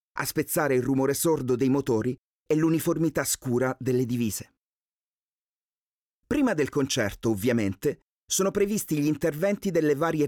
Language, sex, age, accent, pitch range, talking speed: Italian, male, 30-49, native, 125-165 Hz, 130 wpm